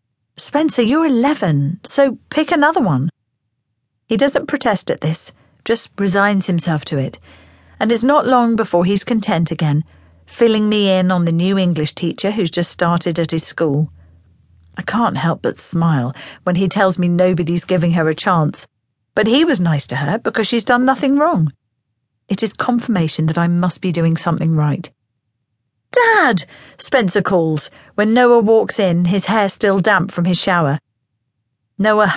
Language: English